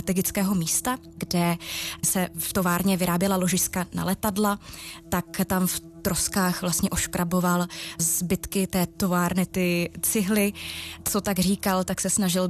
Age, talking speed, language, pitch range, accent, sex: 20-39, 125 wpm, Czech, 175-190 Hz, native, female